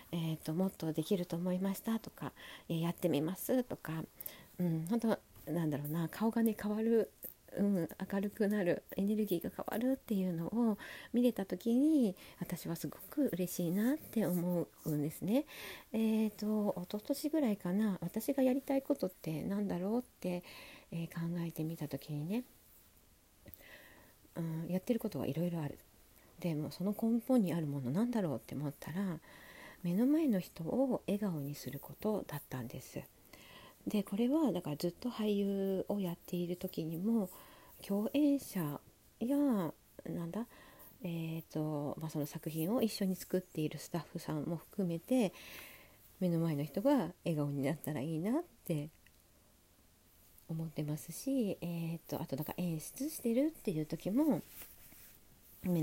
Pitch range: 160-215 Hz